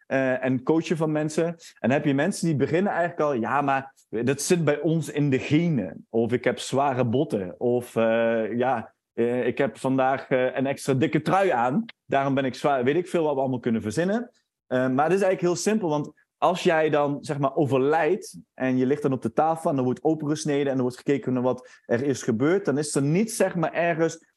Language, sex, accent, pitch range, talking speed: Dutch, male, Dutch, 130-165 Hz, 230 wpm